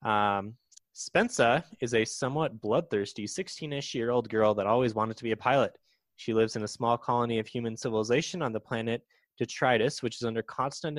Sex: male